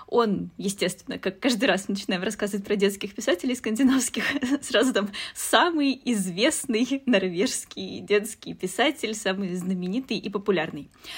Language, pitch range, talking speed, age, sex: Russian, 195-260 Hz, 120 wpm, 20-39, female